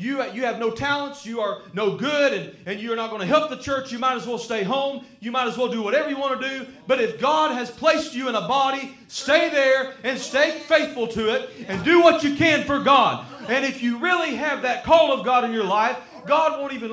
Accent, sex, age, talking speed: American, male, 30-49, 255 wpm